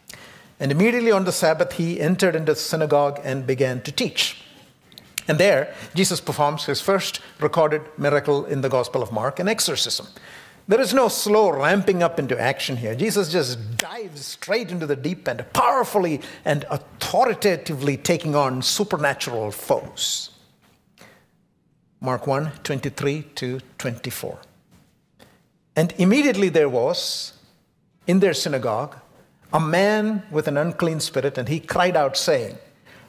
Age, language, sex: 60-79, English, male